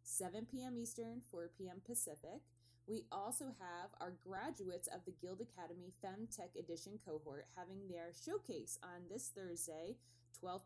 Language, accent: English, American